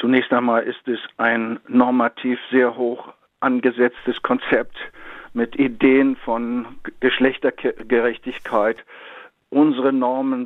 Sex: male